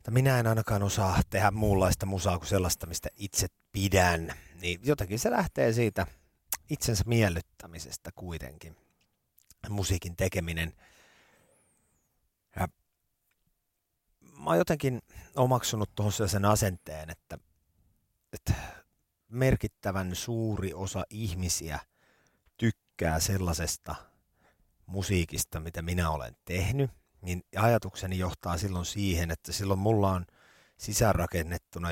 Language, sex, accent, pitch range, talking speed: Finnish, male, native, 85-105 Hz, 100 wpm